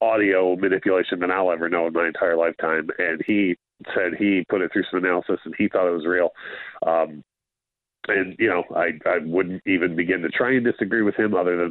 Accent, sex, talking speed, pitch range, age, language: American, male, 215 wpm, 90-105 Hz, 40-59, English